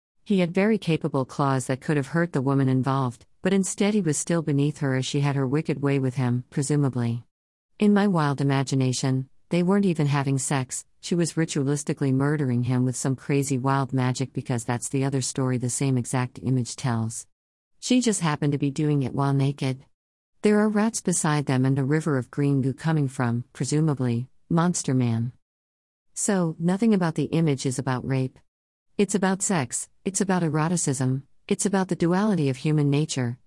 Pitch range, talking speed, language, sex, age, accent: 130-165 Hz, 185 wpm, English, female, 50-69, American